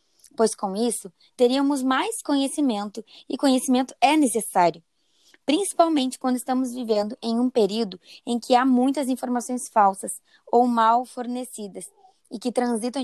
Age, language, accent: 20-39, Portuguese, Brazilian